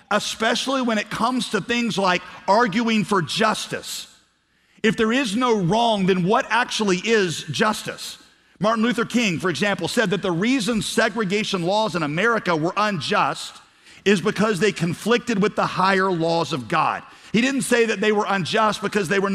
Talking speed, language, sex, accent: 170 wpm, English, male, American